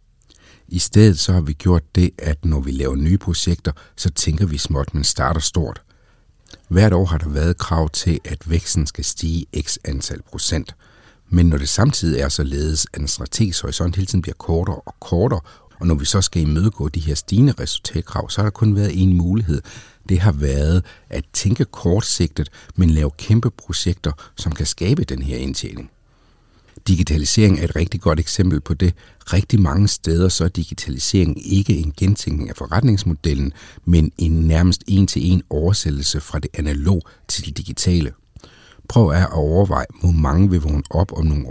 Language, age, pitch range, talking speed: Danish, 60-79, 75-95 Hz, 180 wpm